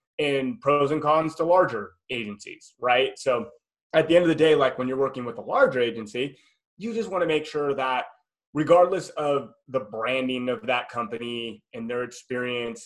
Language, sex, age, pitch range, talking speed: English, male, 30-49, 125-165 Hz, 180 wpm